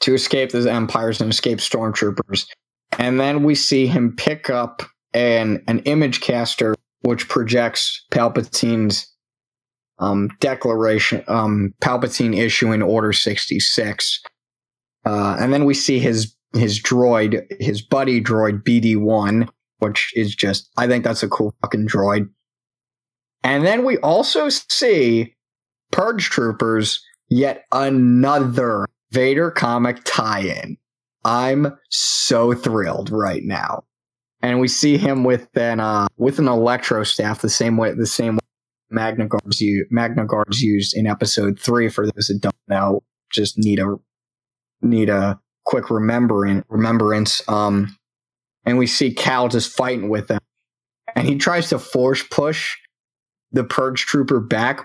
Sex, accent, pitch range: male, American, 105-125 Hz